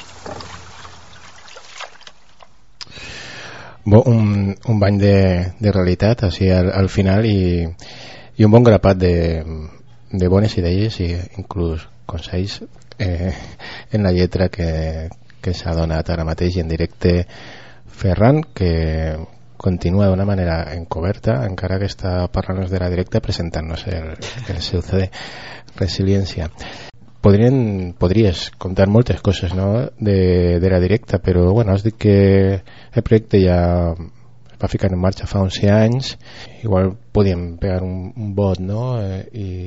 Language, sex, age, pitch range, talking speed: Spanish, male, 30-49, 90-110 Hz, 130 wpm